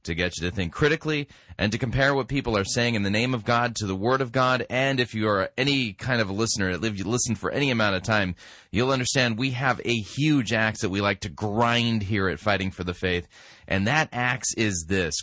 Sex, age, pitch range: male, 30-49, 95-135 Hz